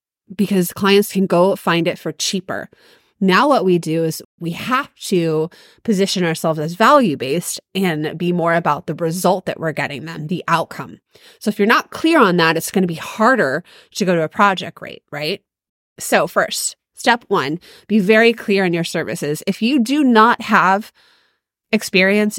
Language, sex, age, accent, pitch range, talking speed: English, female, 30-49, American, 170-215 Hz, 180 wpm